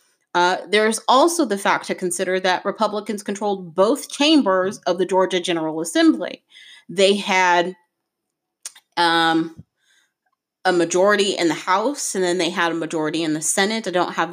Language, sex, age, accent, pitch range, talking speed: English, female, 30-49, American, 175-225 Hz, 155 wpm